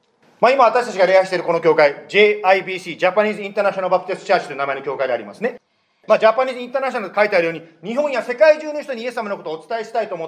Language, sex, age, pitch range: Japanese, male, 40-59, 190-275 Hz